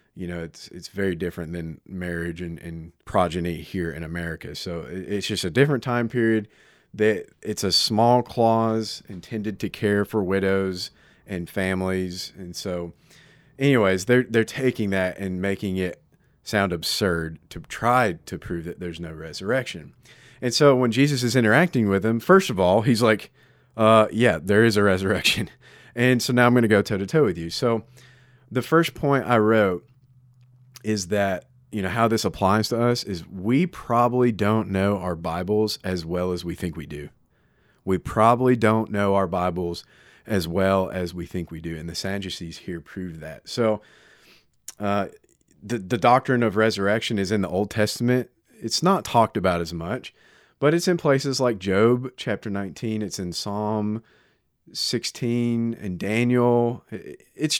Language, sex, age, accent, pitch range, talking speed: English, male, 30-49, American, 90-120 Hz, 170 wpm